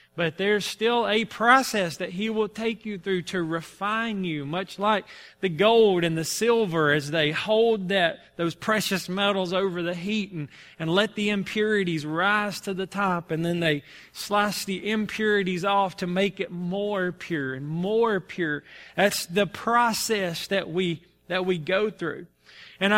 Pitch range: 180-225 Hz